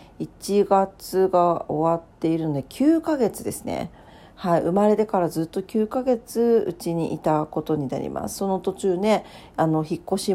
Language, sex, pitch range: Japanese, female, 155-200 Hz